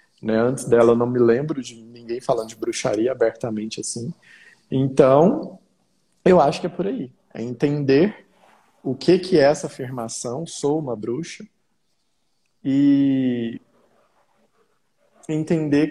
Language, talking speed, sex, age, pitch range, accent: Portuguese, 130 wpm, male, 20-39, 115-155 Hz, Brazilian